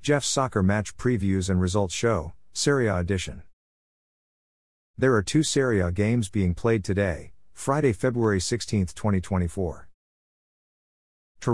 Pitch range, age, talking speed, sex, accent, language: 90-115 Hz, 50-69, 120 wpm, male, American, English